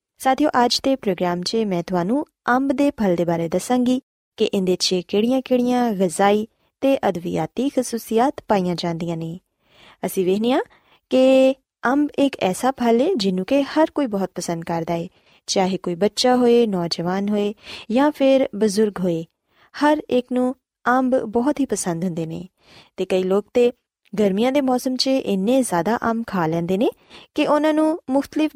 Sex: female